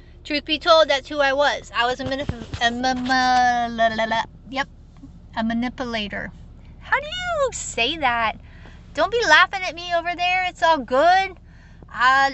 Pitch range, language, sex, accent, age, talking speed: 245-310 Hz, English, female, American, 30-49, 145 wpm